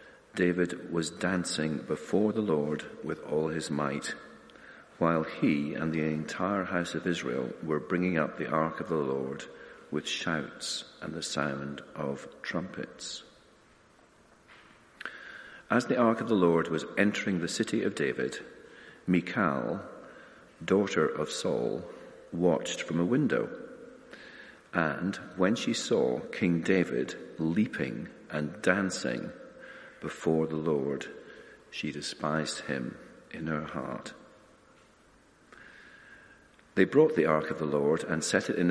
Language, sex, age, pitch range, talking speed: English, male, 40-59, 75-90 Hz, 125 wpm